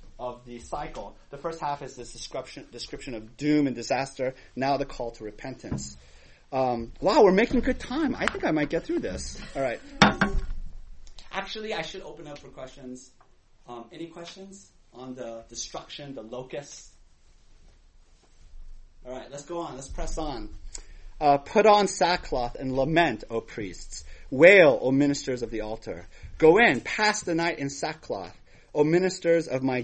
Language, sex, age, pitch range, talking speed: English, male, 30-49, 120-165 Hz, 165 wpm